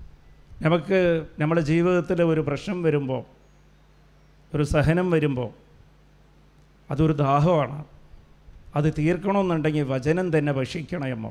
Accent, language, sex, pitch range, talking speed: Indian, English, male, 130-165 Hz, 90 wpm